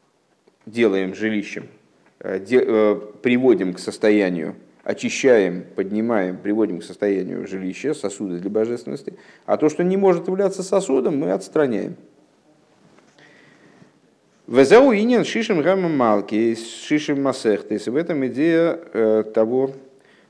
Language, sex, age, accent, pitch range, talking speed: Russian, male, 50-69, native, 105-160 Hz, 85 wpm